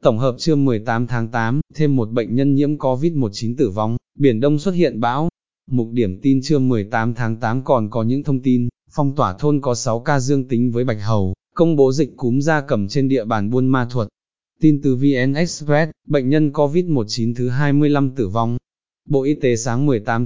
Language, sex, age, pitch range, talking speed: Vietnamese, male, 20-39, 120-150 Hz, 205 wpm